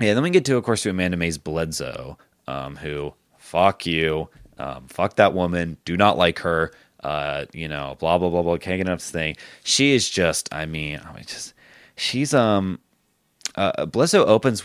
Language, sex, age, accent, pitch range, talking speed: English, male, 20-39, American, 85-110 Hz, 195 wpm